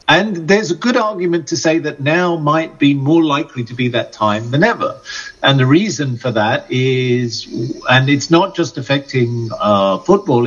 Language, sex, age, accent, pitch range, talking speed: Czech, male, 50-69, British, 120-165 Hz, 185 wpm